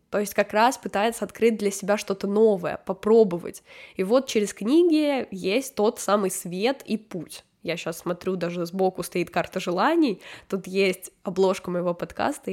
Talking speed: 165 wpm